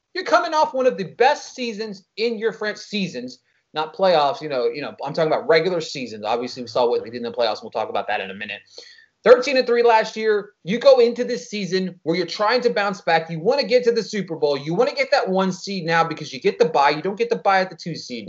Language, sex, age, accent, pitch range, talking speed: English, male, 30-49, American, 180-255 Hz, 280 wpm